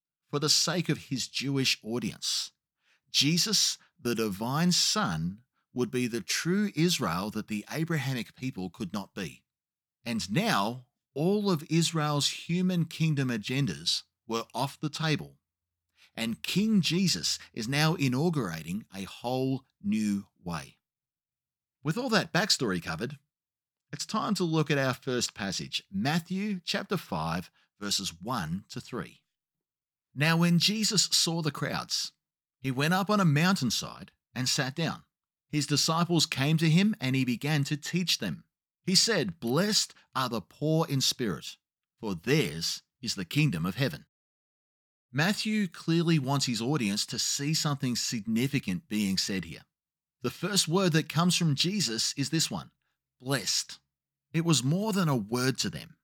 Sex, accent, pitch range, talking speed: male, Australian, 125-175 Hz, 145 wpm